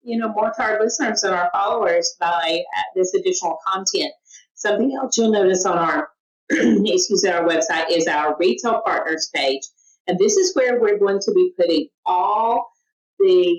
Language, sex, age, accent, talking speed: English, female, 40-59, American, 175 wpm